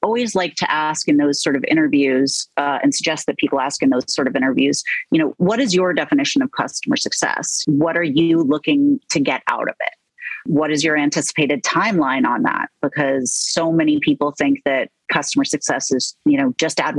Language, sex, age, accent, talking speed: English, female, 30-49, American, 205 wpm